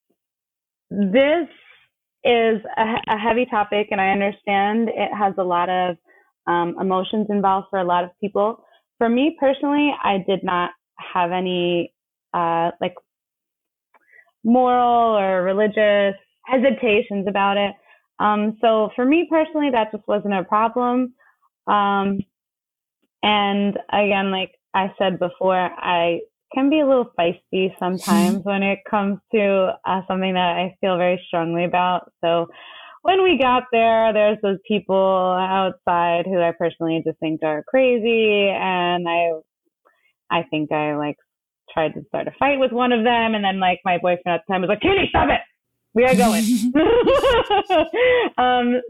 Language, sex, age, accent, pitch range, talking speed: English, female, 20-39, American, 185-245 Hz, 150 wpm